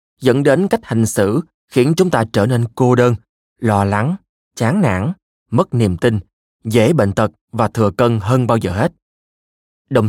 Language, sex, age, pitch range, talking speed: Vietnamese, male, 20-39, 105-135 Hz, 180 wpm